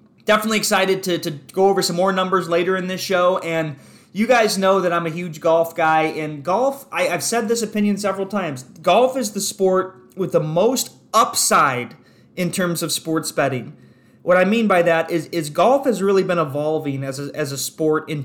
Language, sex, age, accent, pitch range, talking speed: English, male, 20-39, American, 155-190 Hz, 200 wpm